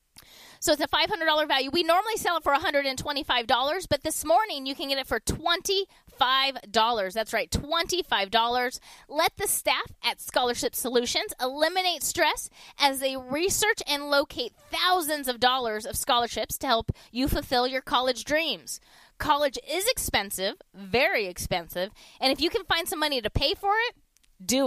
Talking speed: 160 wpm